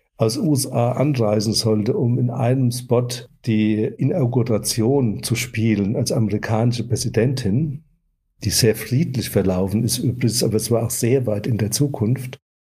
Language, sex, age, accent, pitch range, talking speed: German, male, 60-79, German, 105-130 Hz, 140 wpm